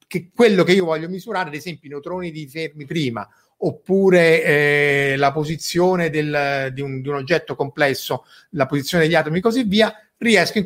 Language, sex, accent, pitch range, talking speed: Italian, male, native, 140-195 Hz, 185 wpm